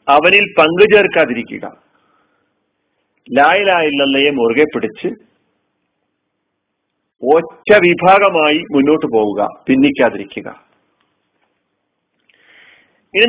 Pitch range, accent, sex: 145-220 Hz, native, male